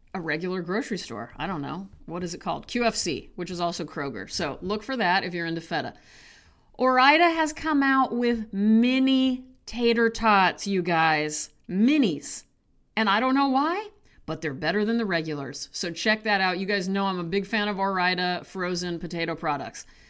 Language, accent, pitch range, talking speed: English, American, 170-220 Hz, 185 wpm